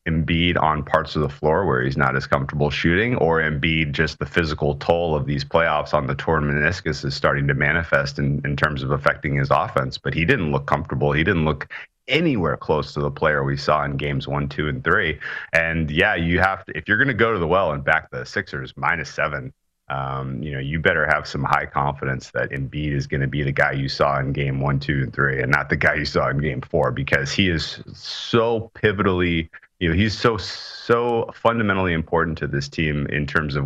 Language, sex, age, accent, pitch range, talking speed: English, male, 30-49, American, 70-85 Hz, 230 wpm